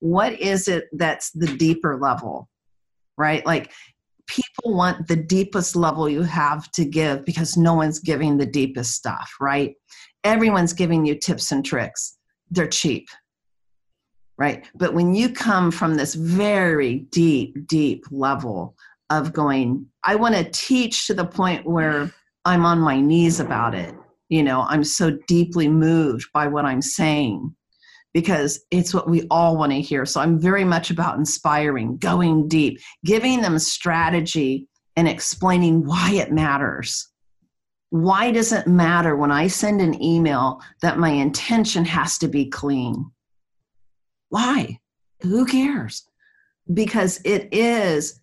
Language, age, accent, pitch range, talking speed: English, 50-69, American, 145-185 Hz, 145 wpm